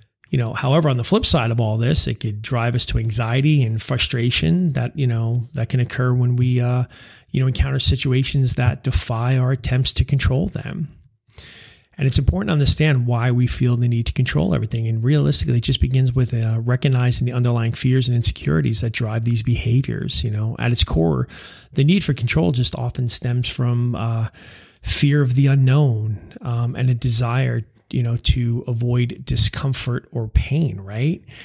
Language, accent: English, American